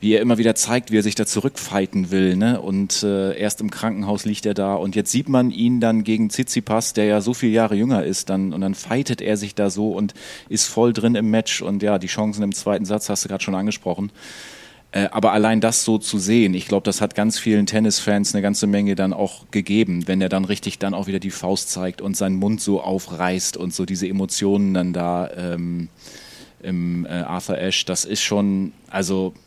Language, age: German, 30-49